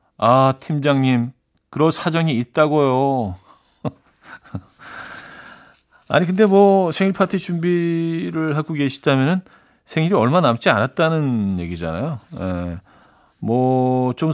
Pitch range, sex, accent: 100-160 Hz, male, native